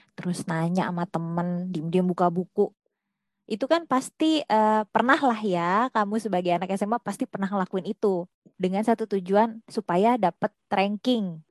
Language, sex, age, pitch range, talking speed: Indonesian, female, 20-39, 195-255 Hz, 145 wpm